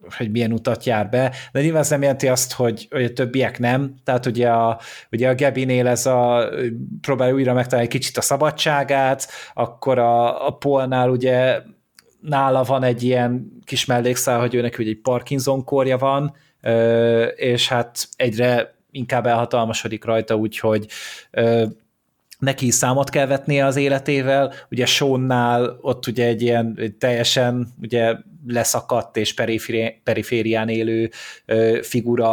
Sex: male